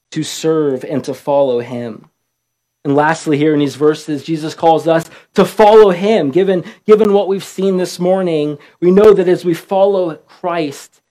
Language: English